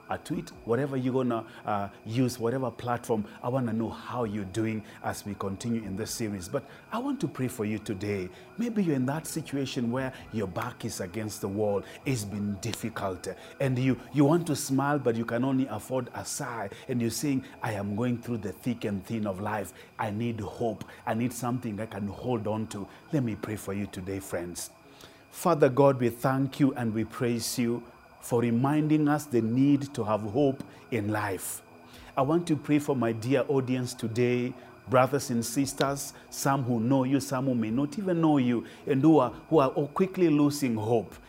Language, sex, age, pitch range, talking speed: English, male, 30-49, 110-140 Hz, 200 wpm